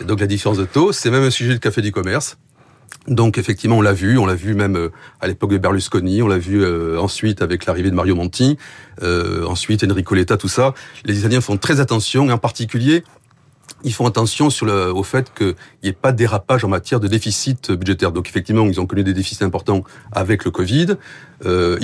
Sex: male